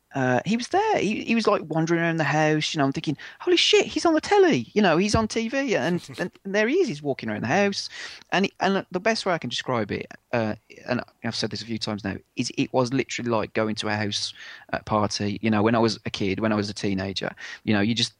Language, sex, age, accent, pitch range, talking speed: English, male, 30-49, British, 110-155 Hz, 275 wpm